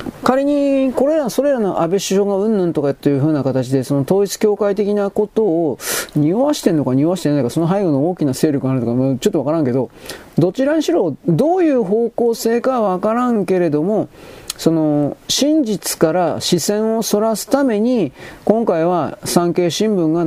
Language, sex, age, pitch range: Japanese, male, 40-59, 140-205 Hz